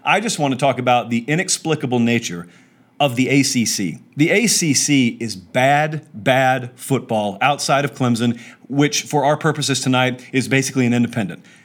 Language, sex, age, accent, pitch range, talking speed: English, male, 40-59, American, 125-165 Hz, 155 wpm